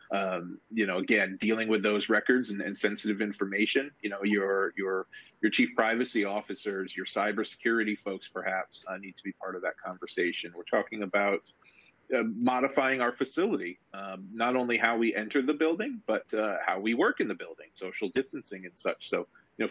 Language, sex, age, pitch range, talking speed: English, male, 30-49, 105-125 Hz, 190 wpm